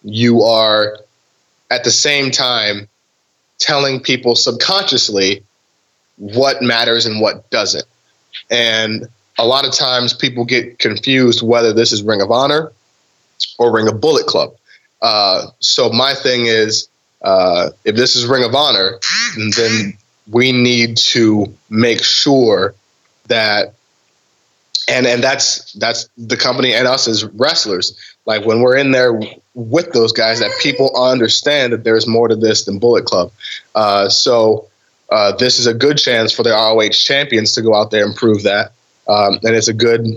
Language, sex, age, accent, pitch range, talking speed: English, male, 20-39, American, 110-120 Hz, 155 wpm